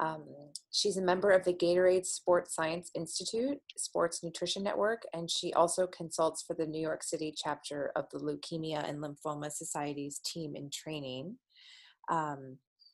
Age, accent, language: 30-49, American, English